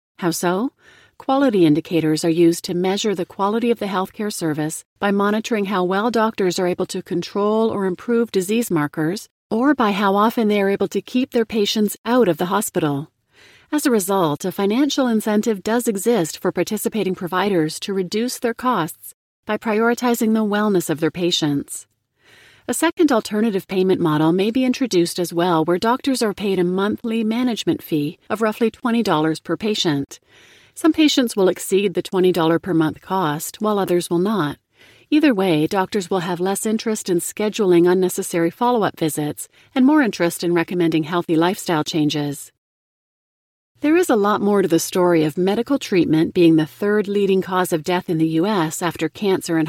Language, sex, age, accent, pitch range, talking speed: English, female, 40-59, American, 170-220 Hz, 175 wpm